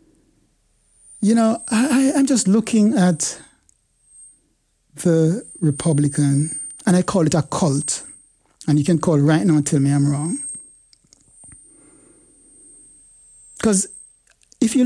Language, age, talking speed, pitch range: English, 60-79, 115 wpm, 150-225 Hz